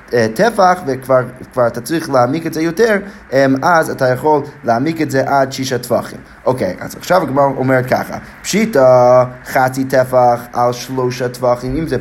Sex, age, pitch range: male, 20-39, 125-165 Hz